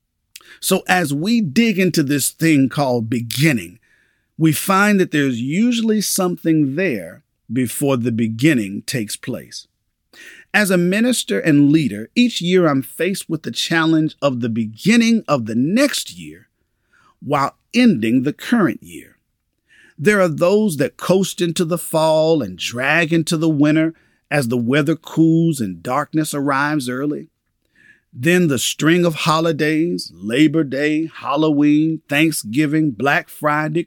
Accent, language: American, English